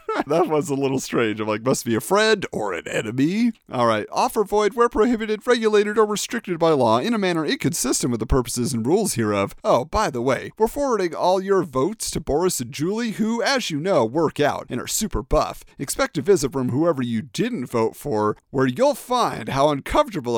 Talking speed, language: 210 wpm, English